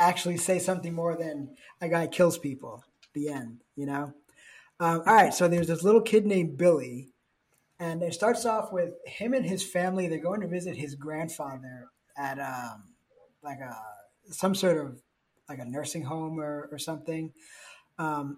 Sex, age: male, 20-39